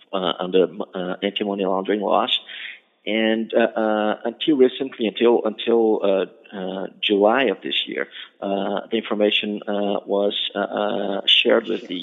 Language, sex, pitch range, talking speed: English, male, 95-105 Hz, 145 wpm